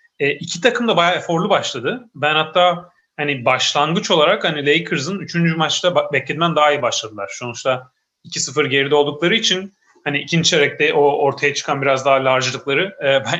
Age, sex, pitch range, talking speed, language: 30-49, male, 140-185 Hz, 165 wpm, Turkish